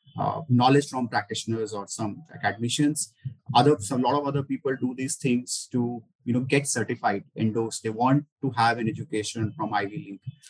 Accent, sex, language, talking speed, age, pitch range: Indian, male, English, 185 wpm, 30-49, 115-145 Hz